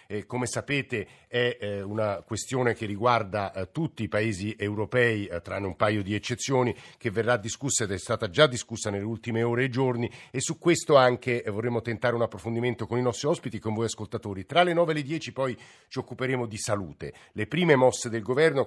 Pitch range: 105-125 Hz